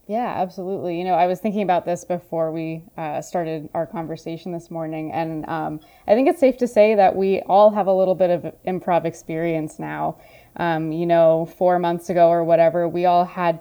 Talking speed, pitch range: 205 wpm, 165-185 Hz